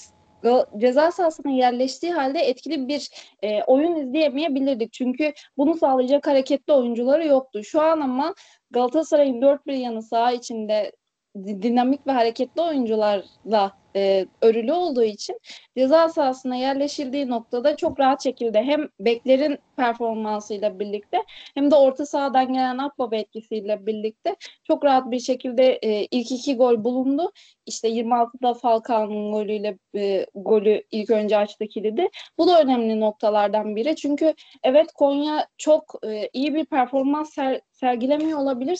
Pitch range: 235-290 Hz